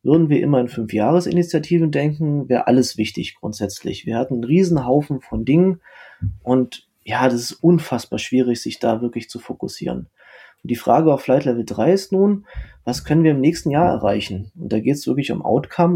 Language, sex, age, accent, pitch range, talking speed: German, male, 20-39, German, 120-160 Hz, 190 wpm